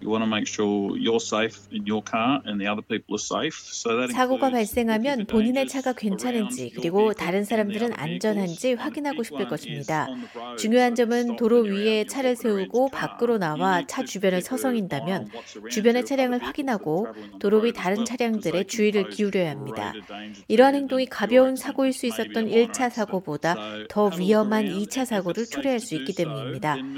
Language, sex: Korean, female